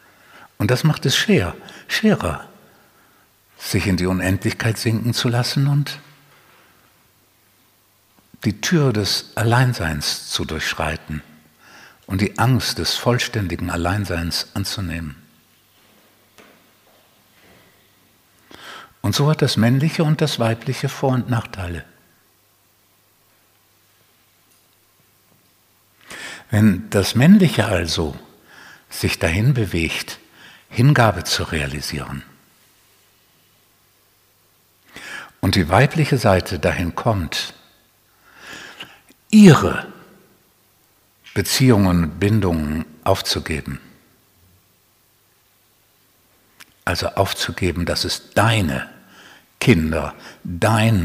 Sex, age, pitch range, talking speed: male, 60-79, 85-115 Hz, 80 wpm